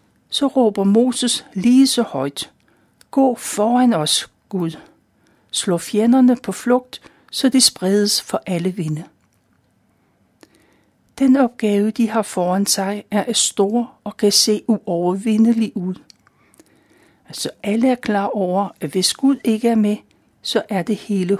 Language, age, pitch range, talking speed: Danish, 60-79, 185-230 Hz, 135 wpm